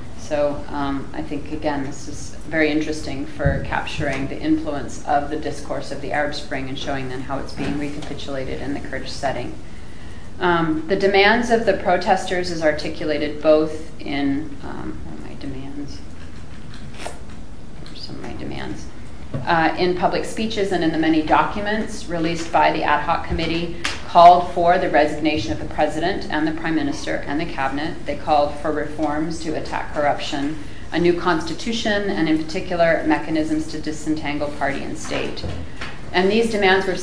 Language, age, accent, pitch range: English, 30-49, American, 145-170 Hz